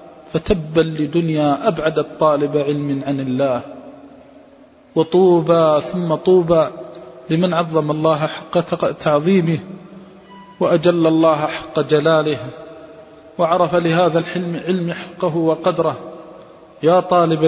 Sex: male